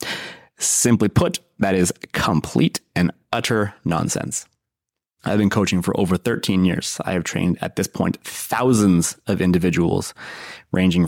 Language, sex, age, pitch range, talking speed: English, male, 20-39, 95-115 Hz, 135 wpm